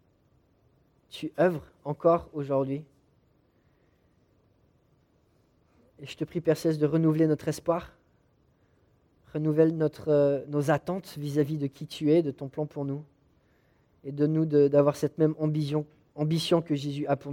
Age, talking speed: 30-49, 130 wpm